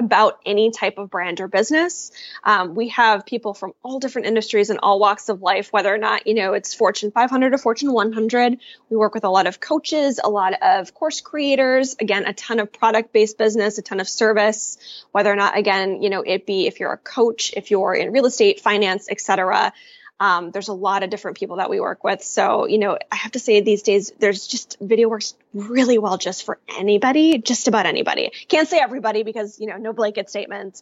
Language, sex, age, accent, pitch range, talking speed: English, female, 10-29, American, 200-245 Hz, 220 wpm